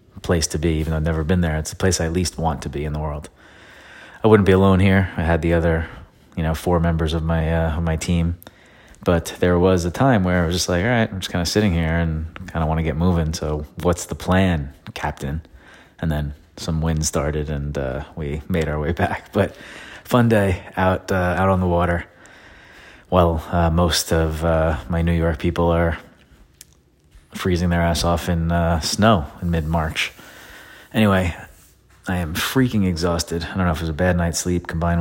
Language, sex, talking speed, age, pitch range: English, male, 215 wpm, 30-49, 80-90 Hz